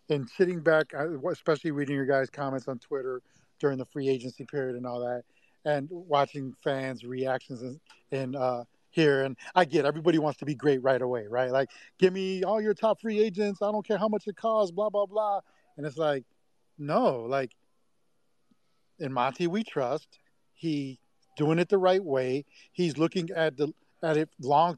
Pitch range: 135-170 Hz